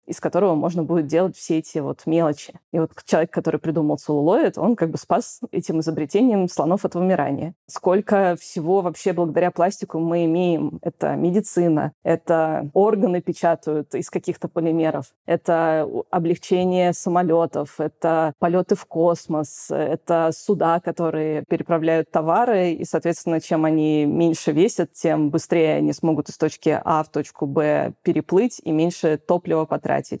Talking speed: 145 wpm